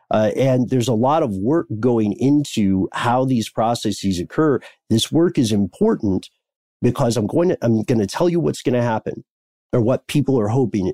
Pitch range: 105-130 Hz